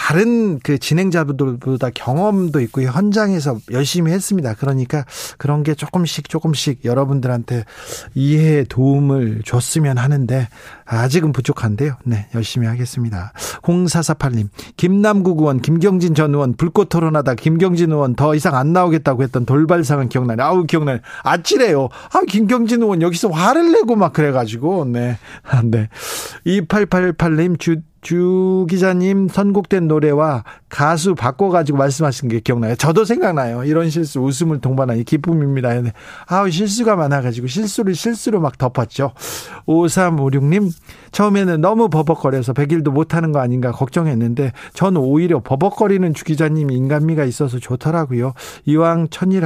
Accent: native